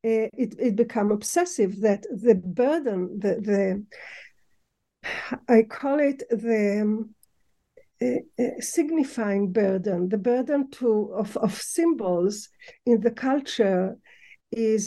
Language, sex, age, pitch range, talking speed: English, female, 50-69, 205-245 Hz, 110 wpm